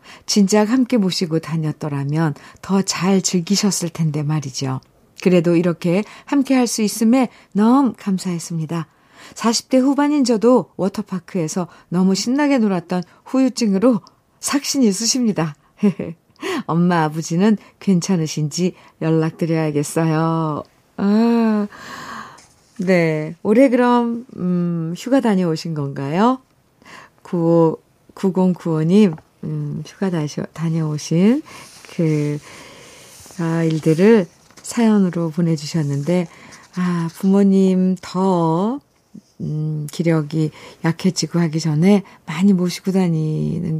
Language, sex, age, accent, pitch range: Korean, female, 50-69, native, 160-210 Hz